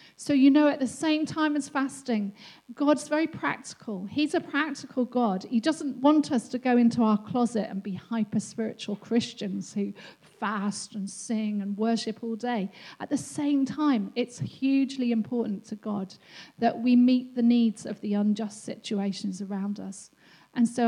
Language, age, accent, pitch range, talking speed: English, 40-59, British, 205-255 Hz, 170 wpm